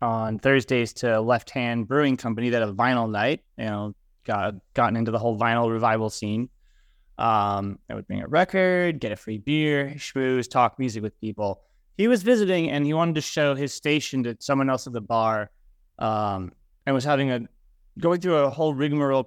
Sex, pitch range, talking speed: male, 115-145 Hz, 195 wpm